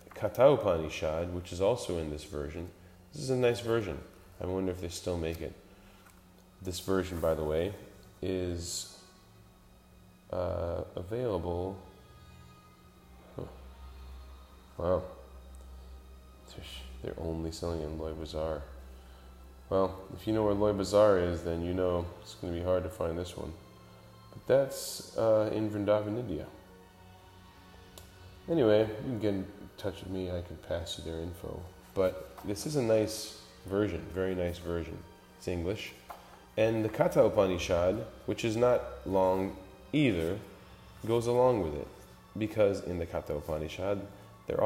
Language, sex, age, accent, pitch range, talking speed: English, male, 20-39, American, 80-100 Hz, 140 wpm